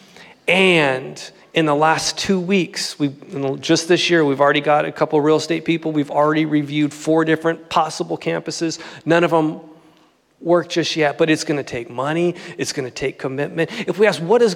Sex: male